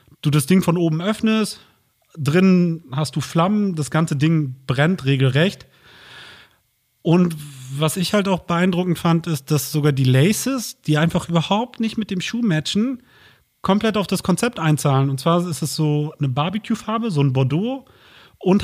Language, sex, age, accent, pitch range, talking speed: German, male, 30-49, German, 130-170 Hz, 165 wpm